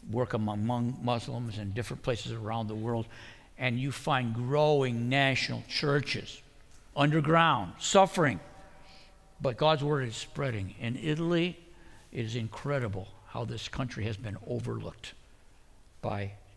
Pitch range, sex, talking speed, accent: 105-160 Hz, male, 125 wpm, American